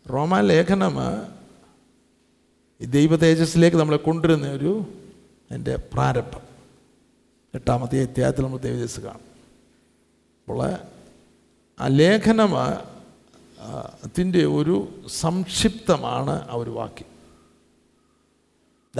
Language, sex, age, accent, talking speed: Malayalam, male, 50-69, native, 75 wpm